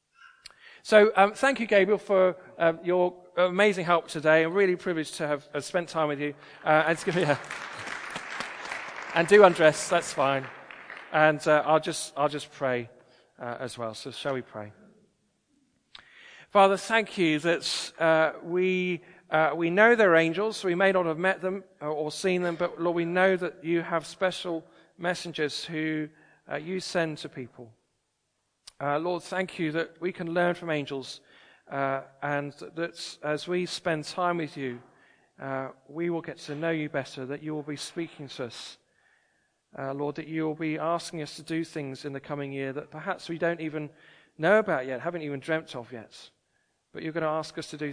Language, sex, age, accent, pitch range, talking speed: English, male, 40-59, British, 140-170 Hz, 190 wpm